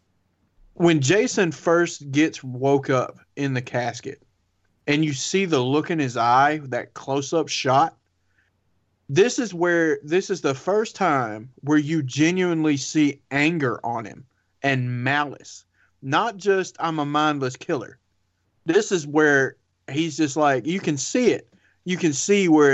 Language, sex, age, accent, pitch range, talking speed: English, male, 30-49, American, 120-150 Hz, 155 wpm